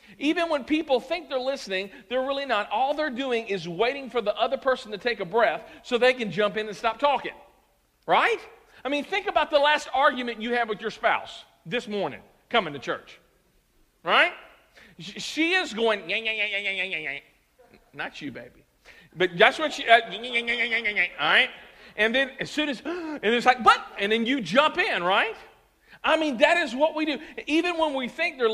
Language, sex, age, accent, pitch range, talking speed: English, male, 50-69, American, 210-295 Hz, 200 wpm